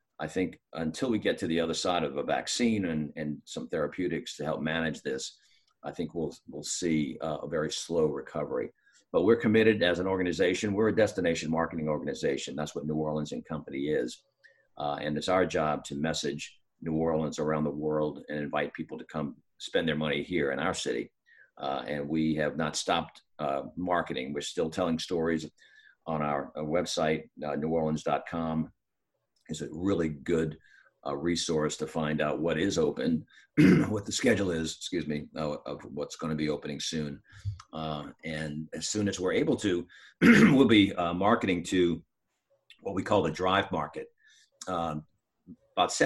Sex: male